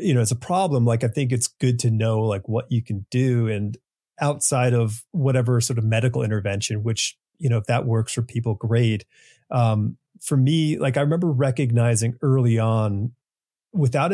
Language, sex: English, male